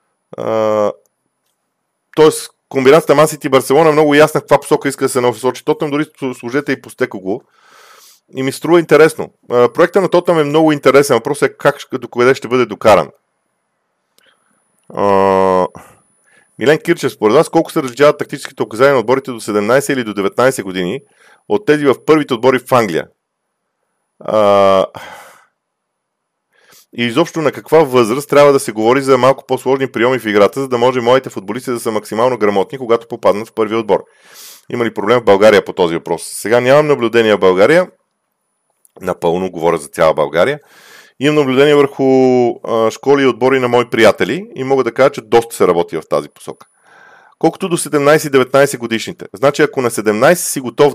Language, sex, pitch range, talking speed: Bulgarian, male, 115-145 Hz, 170 wpm